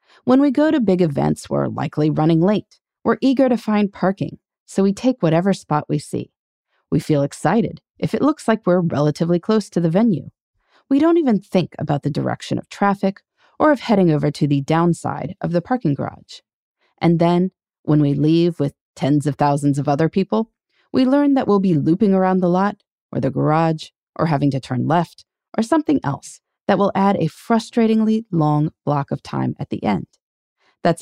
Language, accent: English, American